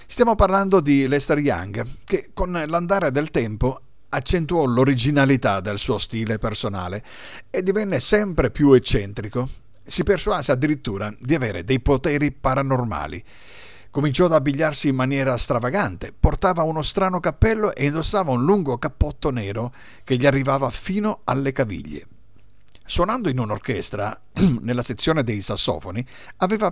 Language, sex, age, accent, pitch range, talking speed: Italian, male, 50-69, native, 115-160 Hz, 135 wpm